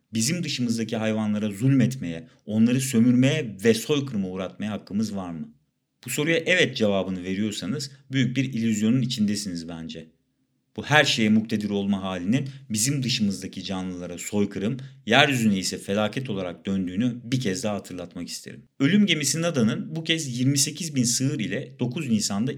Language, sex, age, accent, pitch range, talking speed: Turkish, male, 50-69, native, 95-135 Hz, 140 wpm